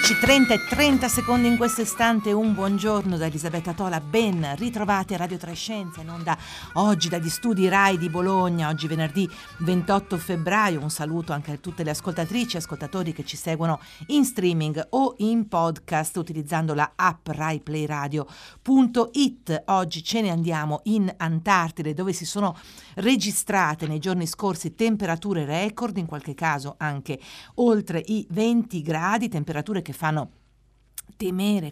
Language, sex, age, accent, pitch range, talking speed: Italian, female, 50-69, native, 155-200 Hz, 150 wpm